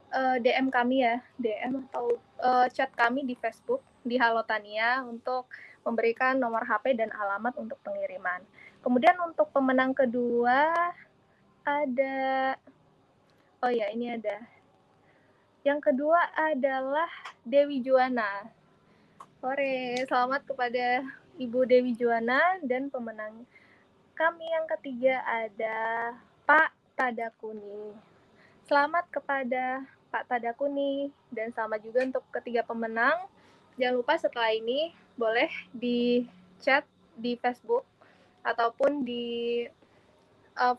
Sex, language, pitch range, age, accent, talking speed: female, Indonesian, 225-275 Hz, 20-39, native, 105 wpm